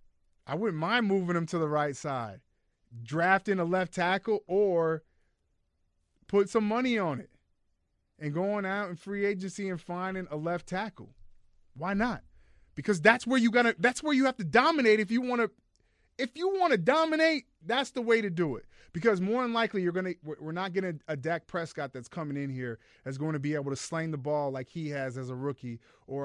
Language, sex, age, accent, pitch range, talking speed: English, male, 30-49, American, 130-180 Hz, 205 wpm